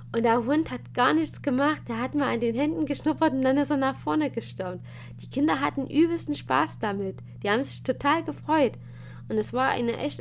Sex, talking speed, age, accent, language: female, 215 wpm, 20-39, German, German